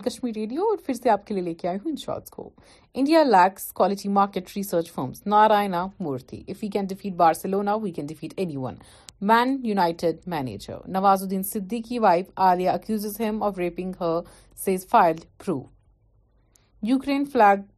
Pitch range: 170-215 Hz